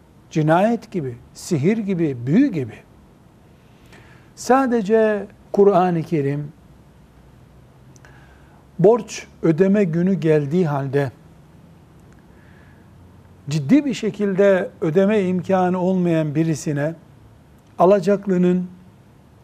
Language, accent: Turkish, native